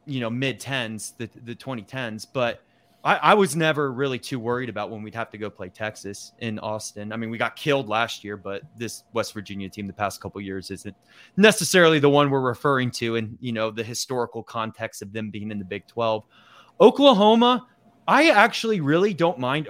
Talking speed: 210 wpm